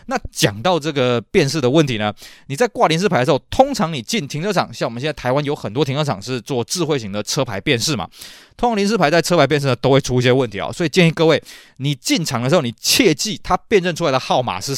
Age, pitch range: 20-39, 130-185 Hz